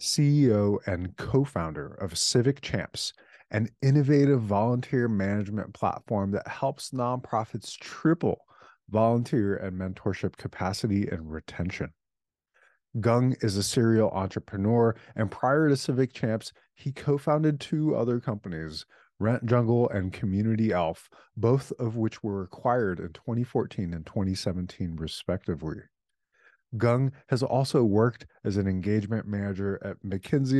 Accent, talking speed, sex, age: American, 120 wpm, male, 30-49